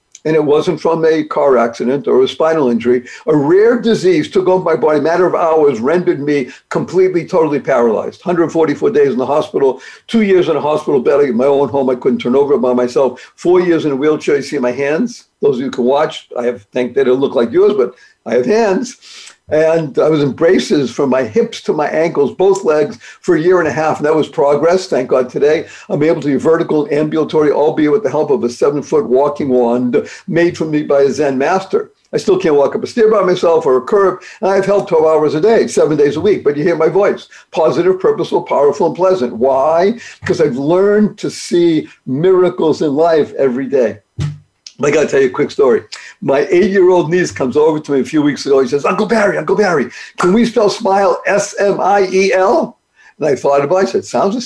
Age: 60-79